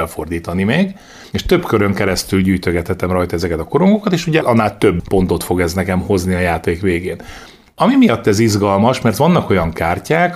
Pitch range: 95-120 Hz